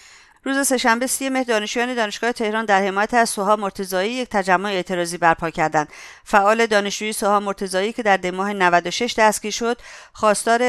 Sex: female